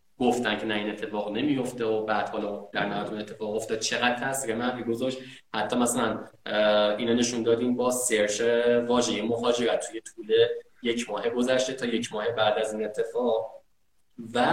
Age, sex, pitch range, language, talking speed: 20-39, male, 105-125 Hz, Persian, 160 wpm